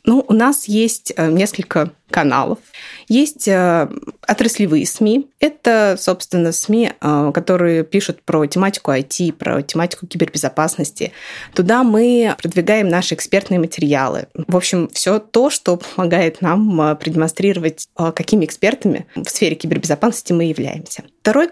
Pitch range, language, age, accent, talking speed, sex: 160-220 Hz, Russian, 20-39, native, 115 wpm, female